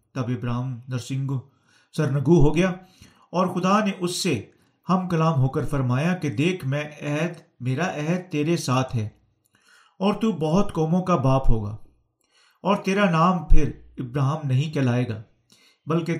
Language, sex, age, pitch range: Urdu, male, 50-69, 140-180 Hz